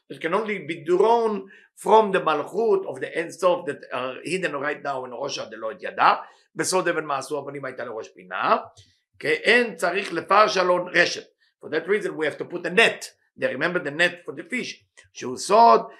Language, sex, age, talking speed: English, male, 50-69, 190 wpm